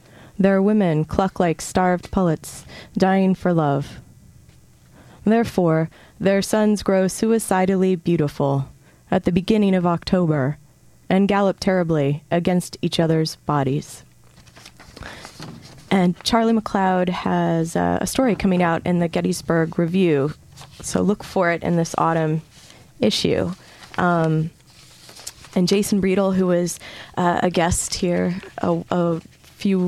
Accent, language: American, English